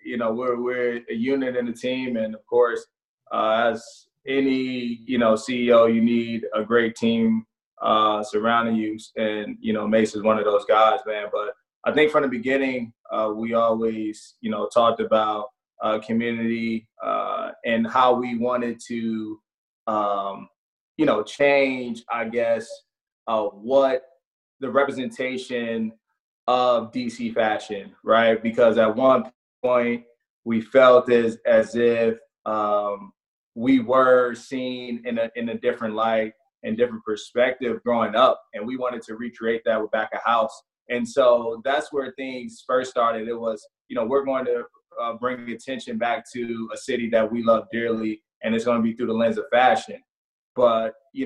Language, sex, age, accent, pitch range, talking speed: English, male, 20-39, American, 115-135 Hz, 165 wpm